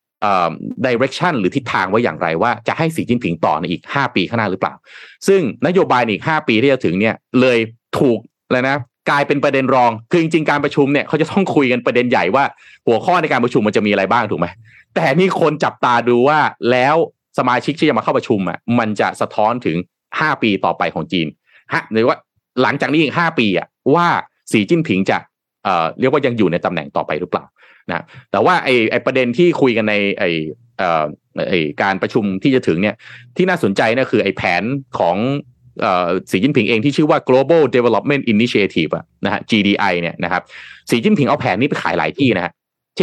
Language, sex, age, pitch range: Thai, male, 30-49, 110-145 Hz